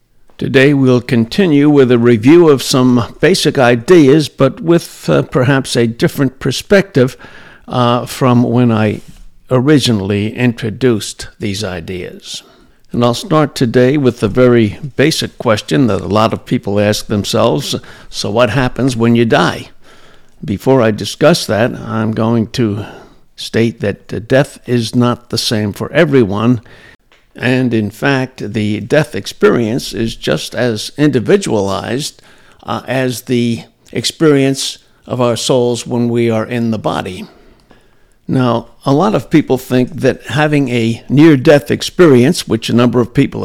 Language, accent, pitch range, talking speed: English, American, 115-135 Hz, 140 wpm